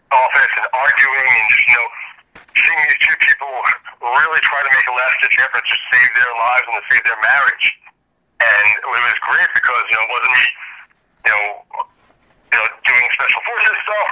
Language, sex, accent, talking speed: English, male, American, 195 wpm